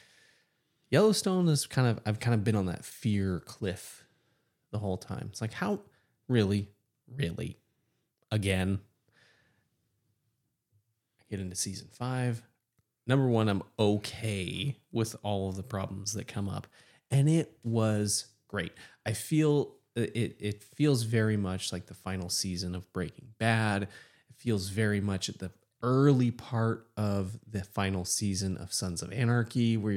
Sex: male